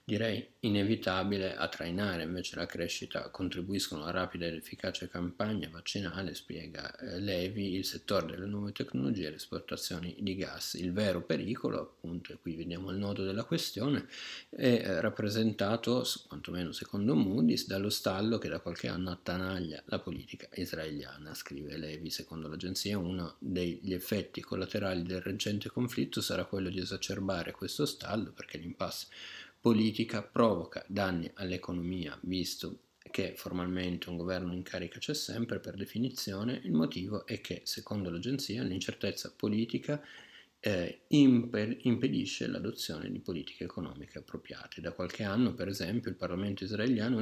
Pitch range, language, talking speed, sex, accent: 90-105 Hz, Italian, 140 wpm, male, native